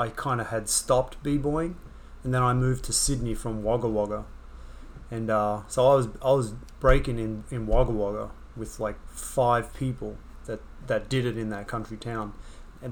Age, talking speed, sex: 30-49, 185 wpm, male